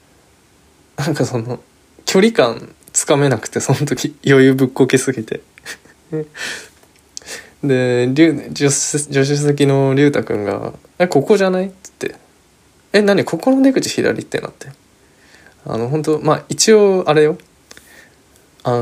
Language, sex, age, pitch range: Japanese, male, 20-39, 115-145 Hz